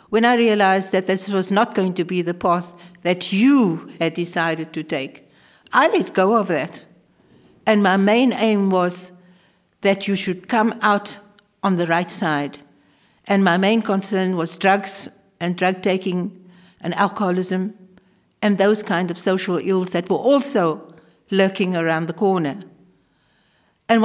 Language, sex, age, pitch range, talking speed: Dutch, female, 60-79, 180-210 Hz, 155 wpm